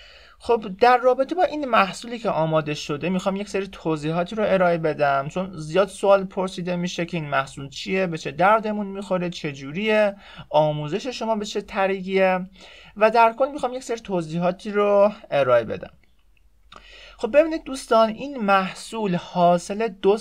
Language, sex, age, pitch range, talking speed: Persian, male, 30-49, 170-220 Hz, 155 wpm